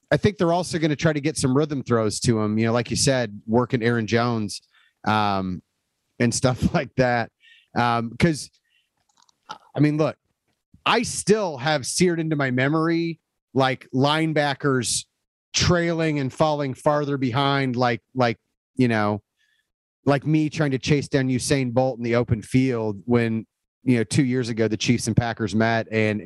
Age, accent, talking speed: 30-49, American, 170 wpm